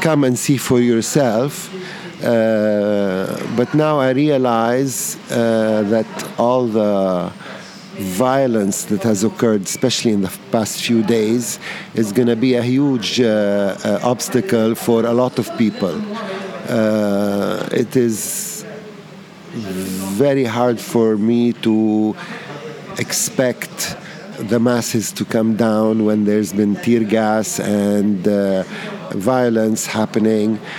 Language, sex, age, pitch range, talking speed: English, male, 50-69, 105-125 Hz, 115 wpm